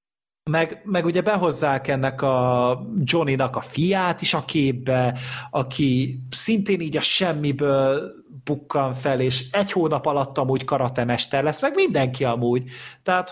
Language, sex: Hungarian, male